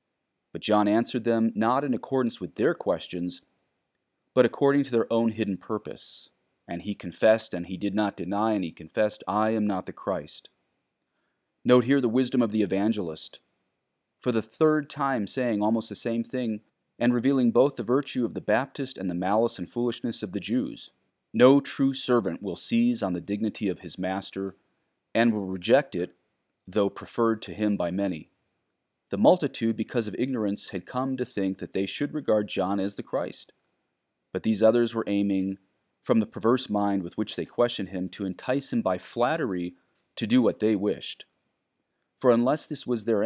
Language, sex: English, male